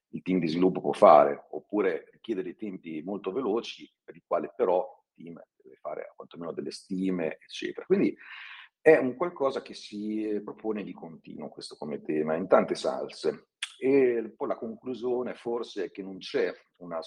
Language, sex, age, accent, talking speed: Italian, male, 40-59, native, 170 wpm